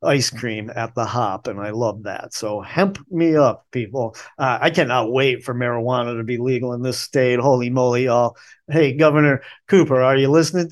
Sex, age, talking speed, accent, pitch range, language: male, 40-59, 195 wpm, American, 125-150 Hz, English